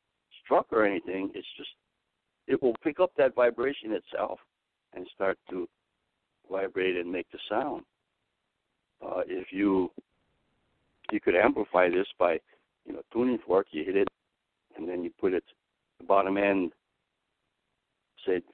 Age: 60-79